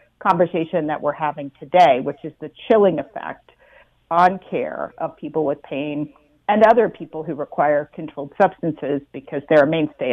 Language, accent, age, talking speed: English, American, 50-69, 160 wpm